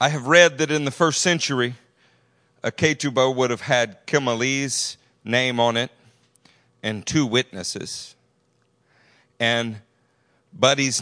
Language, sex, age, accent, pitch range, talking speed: English, male, 40-59, American, 115-140 Hz, 120 wpm